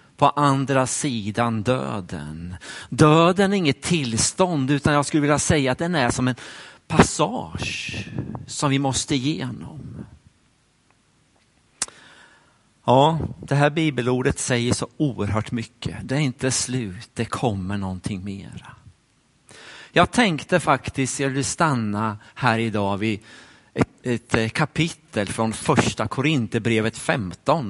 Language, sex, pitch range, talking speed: Swedish, male, 115-155 Hz, 120 wpm